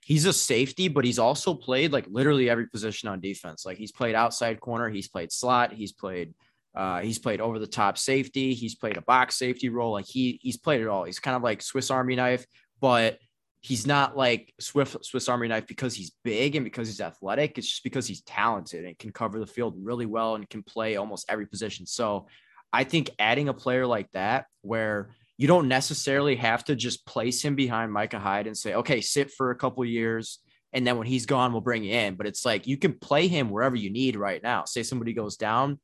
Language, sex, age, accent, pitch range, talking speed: English, male, 20-39, American, 110-130 Hz, 230 wpm